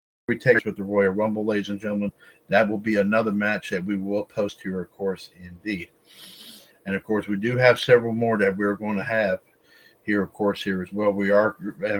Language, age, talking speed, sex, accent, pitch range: English, 50-69, 225 wpm, male, American, 95-110 Hz